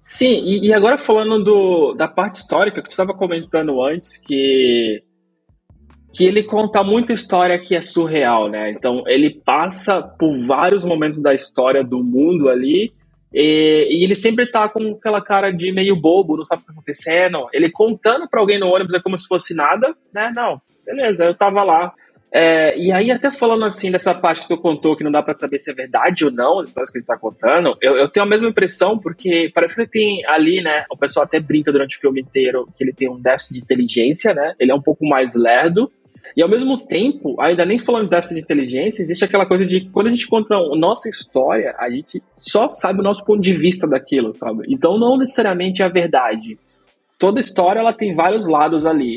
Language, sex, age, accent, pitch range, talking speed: Portuguese, male, 20-39, Brazilian, 150-210 Hz, 210 wpm